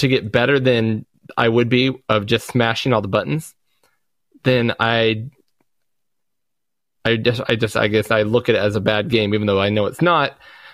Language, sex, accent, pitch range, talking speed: English, male, American, 105-125 Hz, 195 wpm